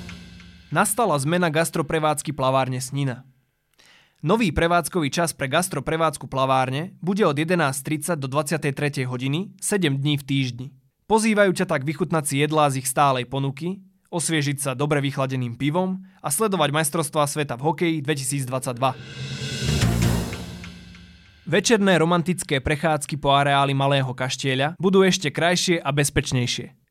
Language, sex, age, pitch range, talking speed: Slovak, male, 20-39, 135-175 Hz, 120 wpm